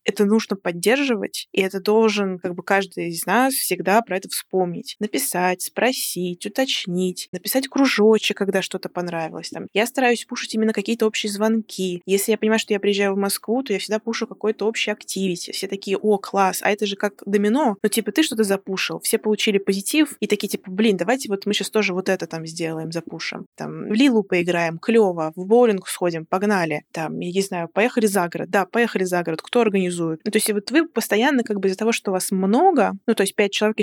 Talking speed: 210 wpm